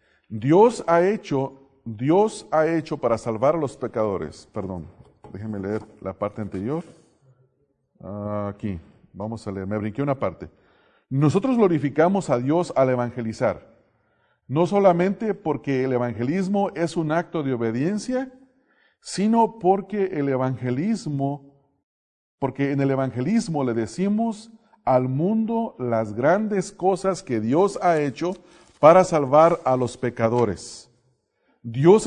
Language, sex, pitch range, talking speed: English, male, 120-185 Hz, 125 wpm